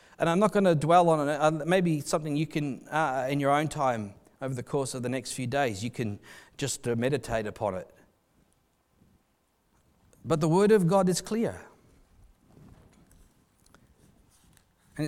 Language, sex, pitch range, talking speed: English, male, 120-165 Hz, 160 wpm